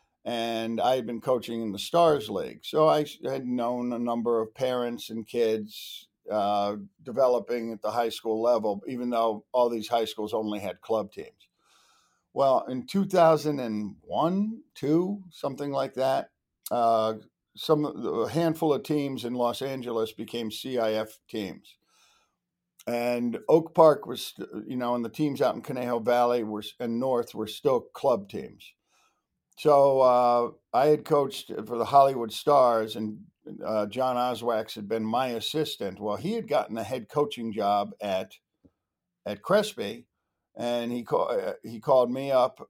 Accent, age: American, 50-69